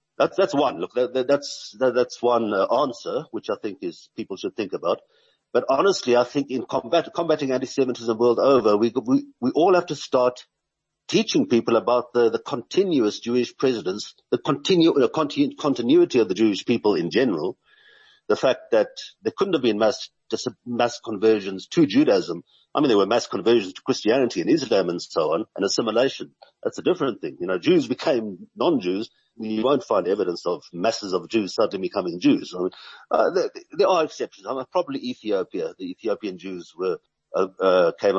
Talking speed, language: 170 wpm, English